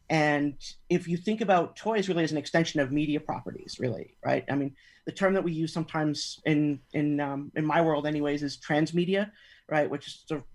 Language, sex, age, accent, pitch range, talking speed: English, male, 40-59, American, 150-185 Hz, 205 wpm